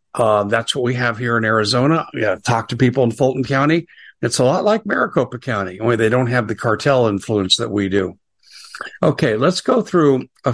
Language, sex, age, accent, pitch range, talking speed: English, male, 60-79, American, 115-150 Hz, 205 wpm